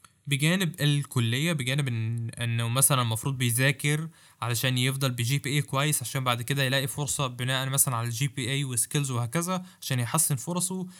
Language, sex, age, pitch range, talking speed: Arabic, male, 20-39, 130-160 Hz, 170 wpm